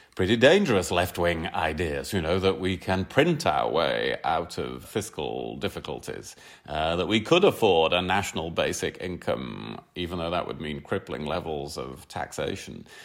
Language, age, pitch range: English, 30-49, 95-115 Hz